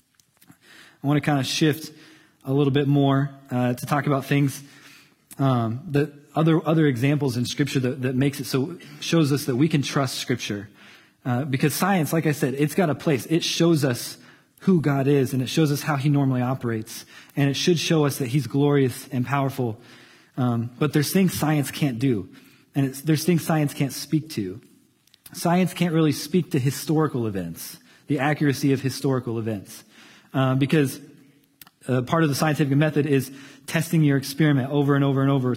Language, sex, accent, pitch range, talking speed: English, male, American, 130-150 Hz, 190 wpm